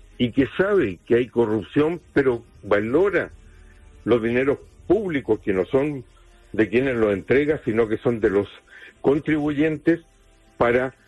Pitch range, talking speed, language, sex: 110-155 Hz, 135 wpm, English, male